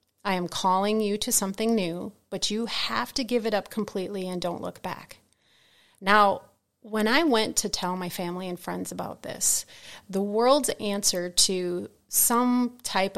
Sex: female